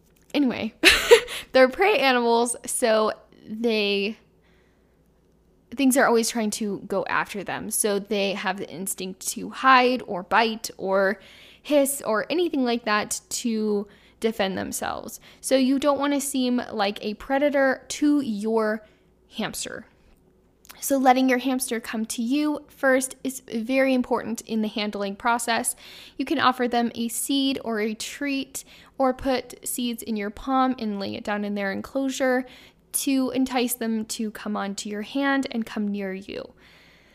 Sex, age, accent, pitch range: female, 10-29, American, 210-265 Hz